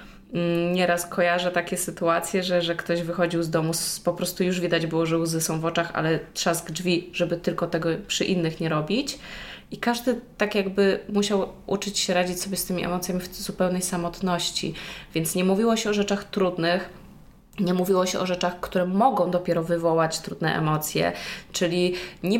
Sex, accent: female, native